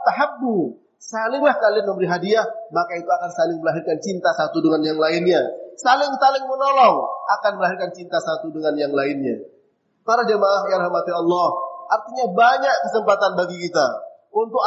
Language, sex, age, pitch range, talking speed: Indonesian, male, 30-49, 175-255 Hz, 145 wpm